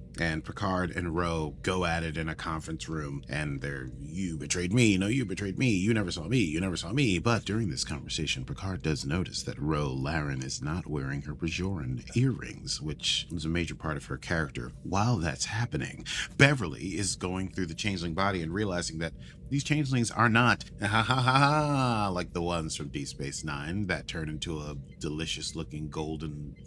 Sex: male